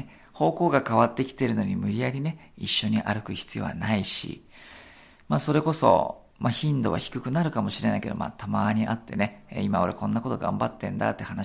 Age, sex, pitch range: 40-59, male, 110-135 Hz